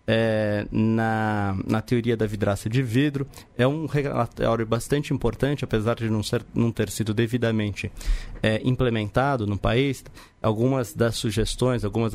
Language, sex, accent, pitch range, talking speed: Portuguese, male, Brazilian, 110-140 Hz, 130 wpm